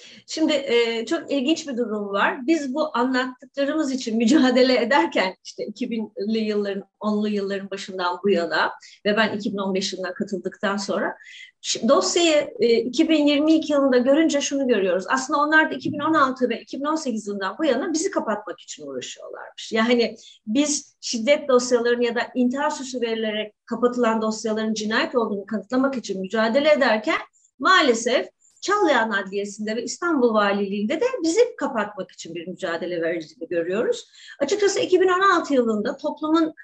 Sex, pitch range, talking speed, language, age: female, 210-295 Hz, 130 wpm, Turkish, 40-59